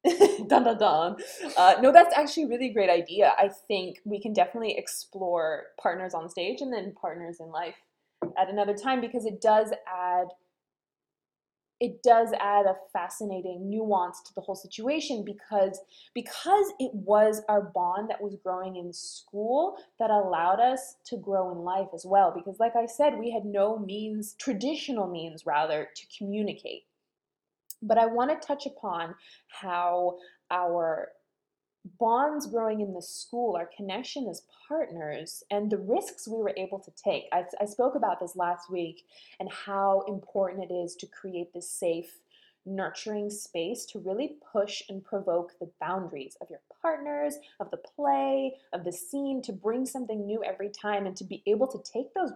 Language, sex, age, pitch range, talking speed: English, female, 20-39, 180-245 Hz, 165 wpm